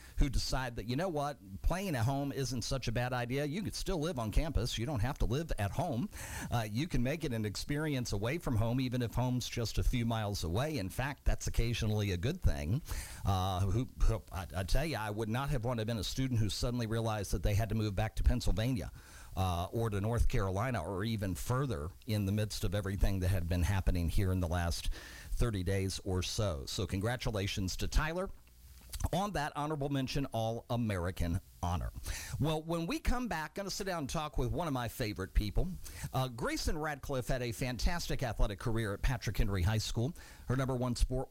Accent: American